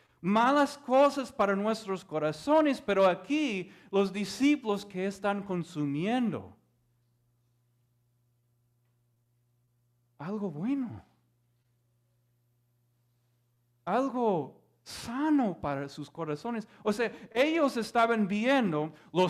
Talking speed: 80 wpm